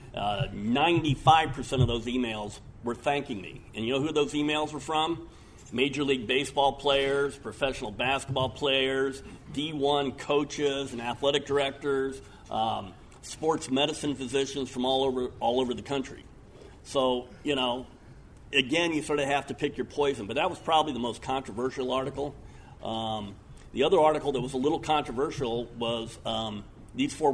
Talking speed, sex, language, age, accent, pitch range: 160 wpm, male, English, 50-69, American, 115-140 Hz